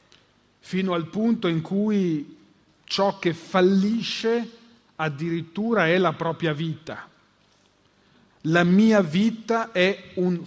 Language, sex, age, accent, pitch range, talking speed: Italian, male, 40-59, native, 155-205 Hz, 105 wpm